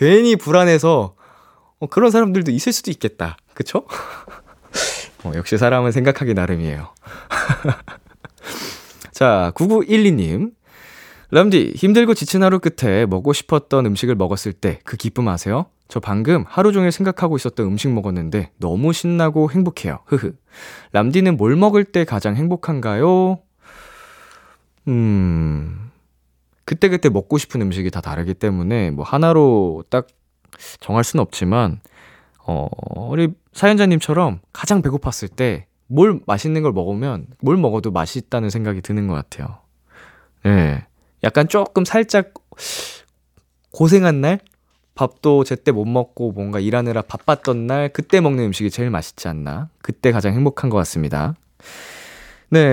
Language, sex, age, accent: Korean, male, 20-39, native